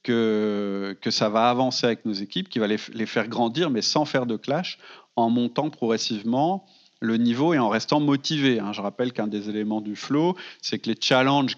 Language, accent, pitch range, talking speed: French, French, 110-150 Hz, 200 wpm